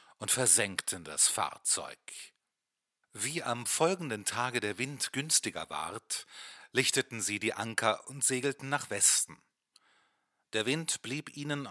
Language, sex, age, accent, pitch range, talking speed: German, male, 30-49, German, 110-145 Hz, 125 wpm